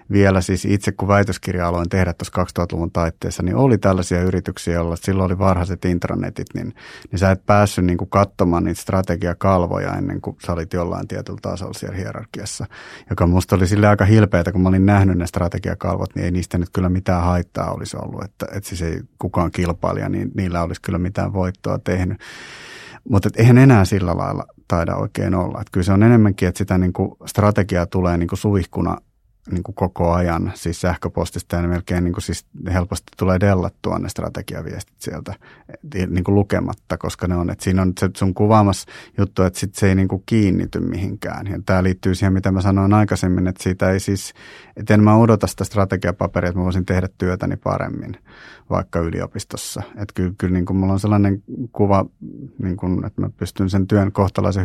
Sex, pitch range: male, 90-100 Hz